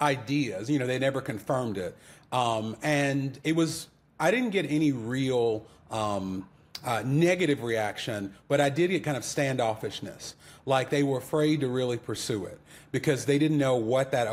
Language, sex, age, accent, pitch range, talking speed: English, male, 40-59, American, 120-155 Hz, 170 wpm